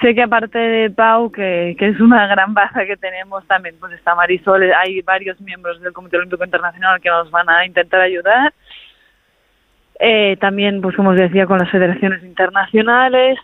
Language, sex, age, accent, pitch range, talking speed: Spanish, female, 20-39, Spanish, 190-225 Hz, 180 wpm